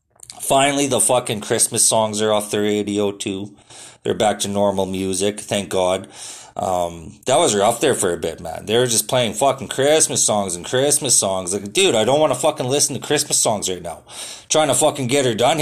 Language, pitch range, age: English, 105-170 Hz, 30-49